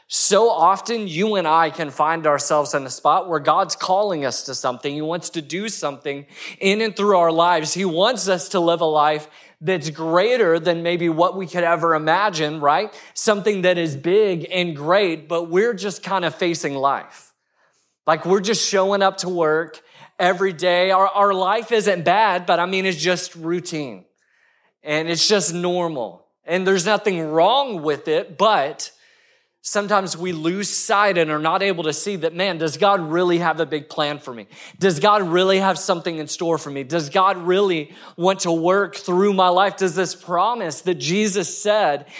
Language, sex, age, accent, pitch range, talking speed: English, male, 30-49, American, 160-195 Hz, 190 wpm